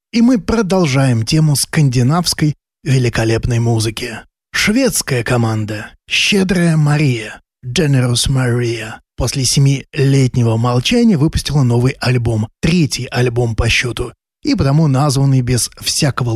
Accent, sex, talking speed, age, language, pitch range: native, male, 95 wpm, 20-39, Russian, 120-160 Hz